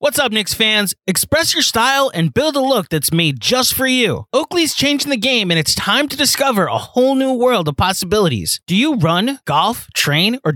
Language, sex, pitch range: English, male, 165-260 Hz